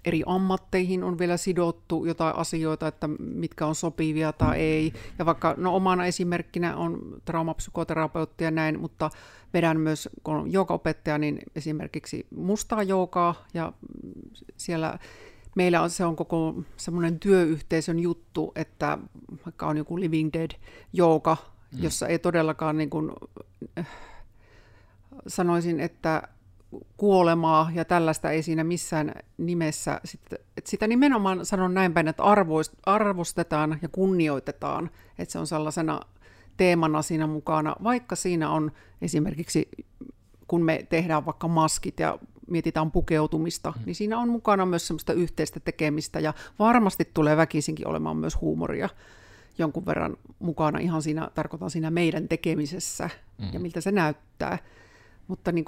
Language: Finnish